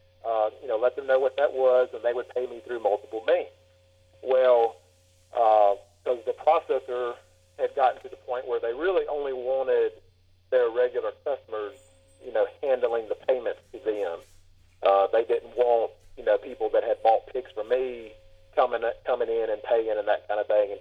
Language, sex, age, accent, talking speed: English, male, 40-59, American, 190 wpm